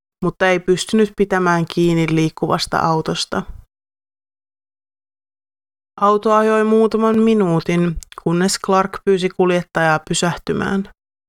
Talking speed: 85 wpm